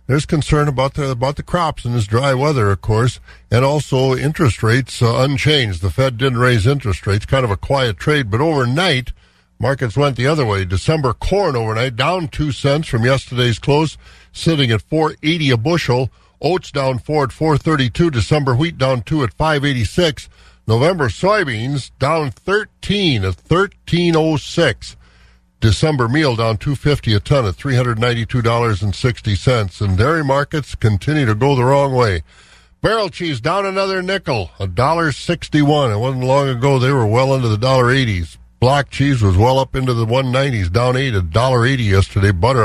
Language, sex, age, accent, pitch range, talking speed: English, male, 50-69, American, 115-150 Hz, 190 wpm